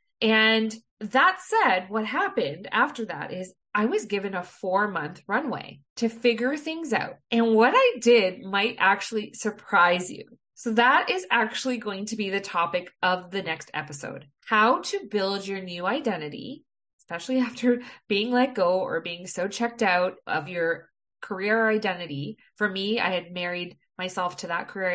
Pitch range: 185-245 Hz